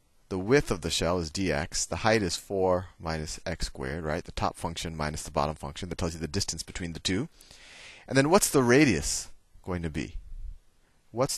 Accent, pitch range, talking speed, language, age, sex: American, 80-105 Hz, 205 wpm, English, 30-49, male